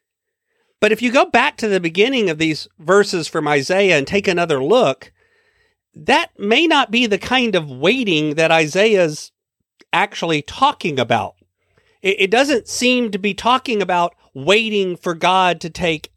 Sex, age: male, 40-59